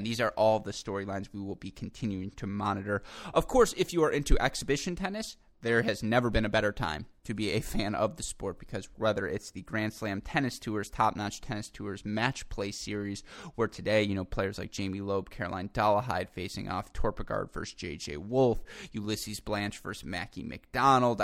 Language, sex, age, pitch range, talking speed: English, male, 20-39, 100-120 Hz, 195 wpm